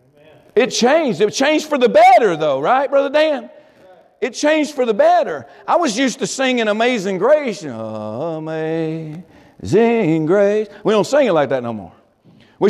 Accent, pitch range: American, 170-255 Hz